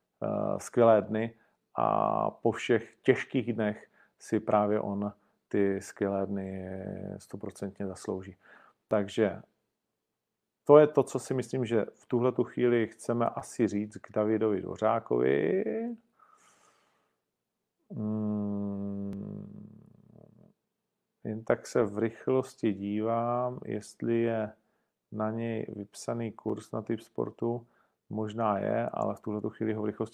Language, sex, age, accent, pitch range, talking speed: Czech, male, 40-59, native, 105-130 Hz, 110 wpm